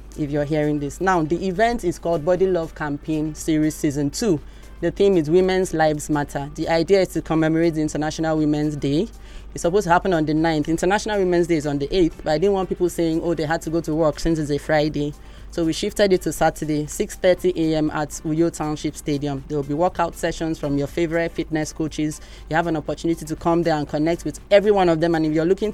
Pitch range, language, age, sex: 155-180 Hz, English, 20-39, male